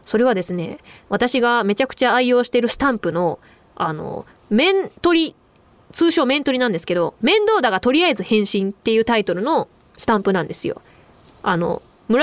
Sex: female